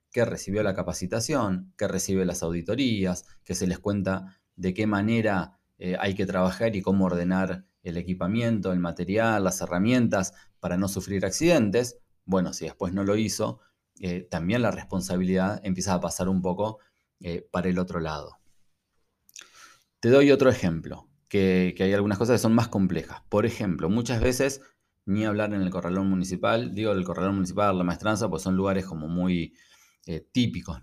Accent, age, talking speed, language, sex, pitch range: Argentinian, 20-39, 170 wpm, Spanish, male, 90-110 Hz